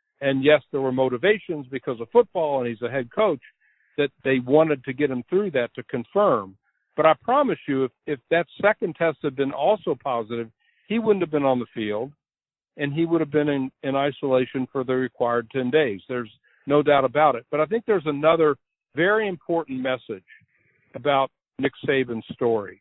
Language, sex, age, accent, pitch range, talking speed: English, male, 60-79, American, 130-170 Hz, 190 wpm